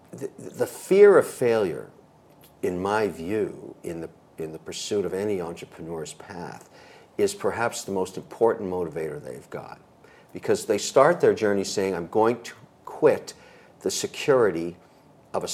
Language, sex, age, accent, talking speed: English, male, 50-69, American, 145 wpm